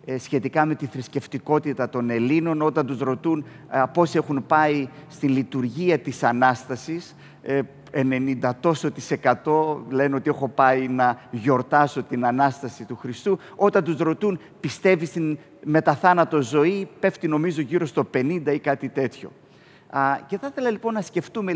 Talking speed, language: 135 wpm, Greek